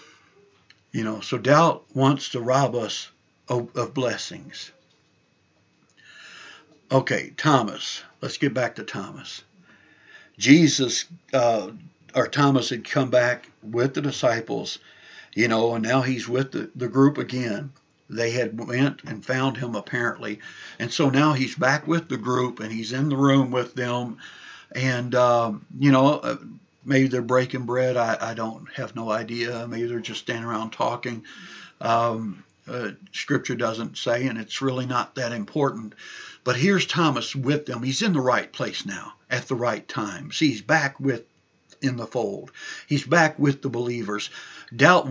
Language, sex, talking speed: English, male, 160 wpm